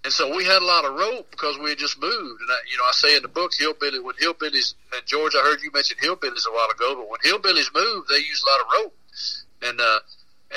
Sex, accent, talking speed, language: male, American, 265 wpm, English